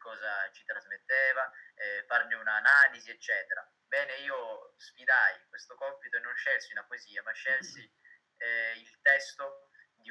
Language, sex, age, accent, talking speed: Italian, male, 20-39, native, 135 wpm